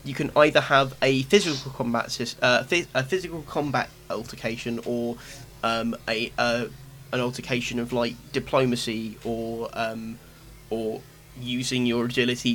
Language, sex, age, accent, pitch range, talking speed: English, male, 10-29, British, 115-130 Hz, 130 wpm